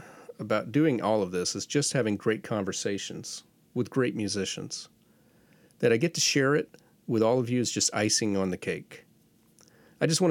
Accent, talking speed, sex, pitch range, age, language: American, 185 wpm, male, 100-135 Hz, 40-59, English